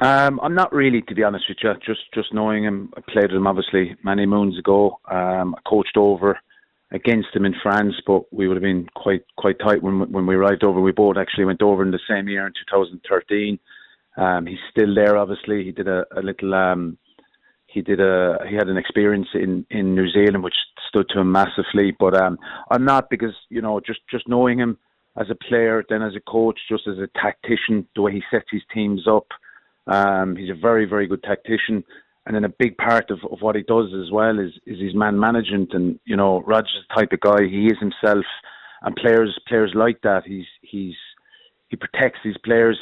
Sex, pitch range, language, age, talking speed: male, 95-110 Hz, English, 30-49, 220 wpm